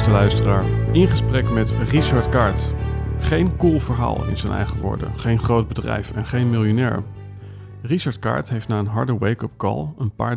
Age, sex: 40-59, male